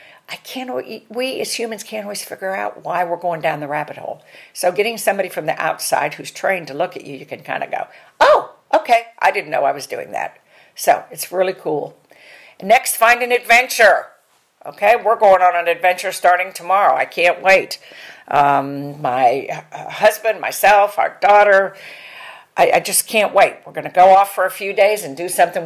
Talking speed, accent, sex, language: 195 wpm, American, female, English